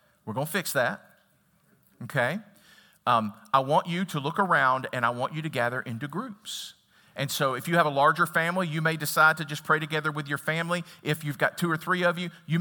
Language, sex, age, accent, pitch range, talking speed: English, male, 40-59, American, 145-175 Hz, 230 wpm